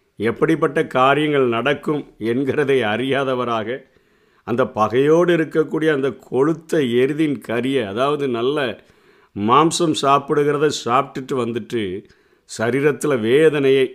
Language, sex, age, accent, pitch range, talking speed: Tamil, male, 50-69, native, 120-150 Hz, 85 wpm